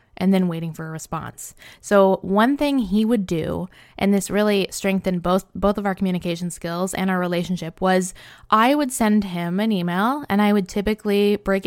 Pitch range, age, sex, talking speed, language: 175-220 Hz, 20-39, female, 190 wpm, English